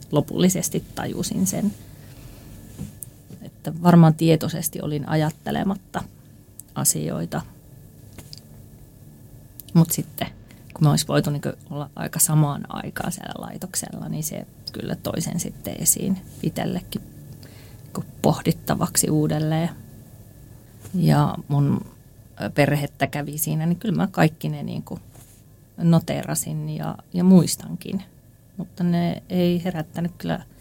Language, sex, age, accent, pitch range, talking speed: Finnish, female, 30-49, native, 140-180 Hz, 100 wpm